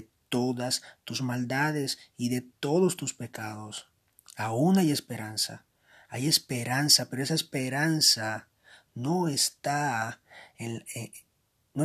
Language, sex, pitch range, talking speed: Spanish, male, 120-150 Hz, 85 wpm